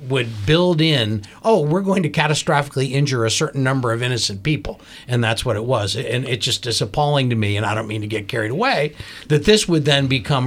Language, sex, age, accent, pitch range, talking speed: English, male, 60-79, American, 110-145 Hz, 230 wpm